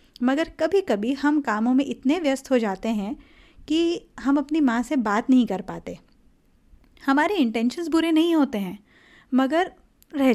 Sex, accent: female, native